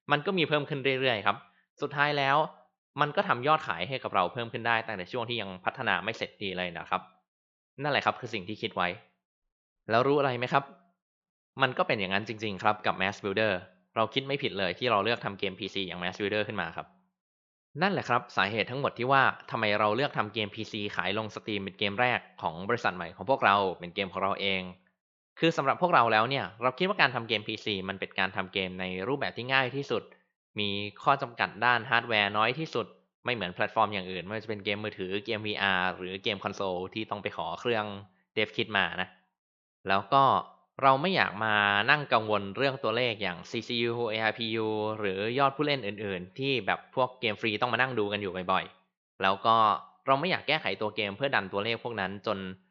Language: Thai